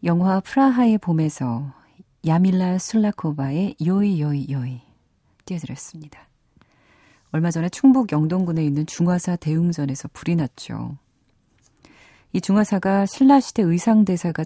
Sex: female